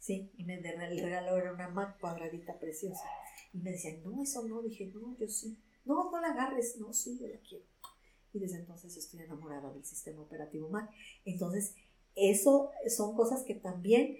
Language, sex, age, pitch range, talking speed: Spanish, female, 50-69, 165-215 Hz, 190 wpm